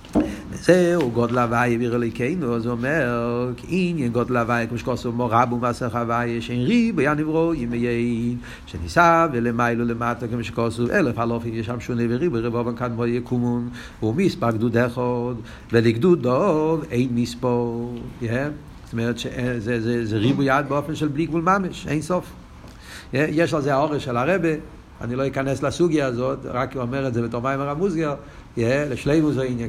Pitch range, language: 115-135 Hz, Hebrew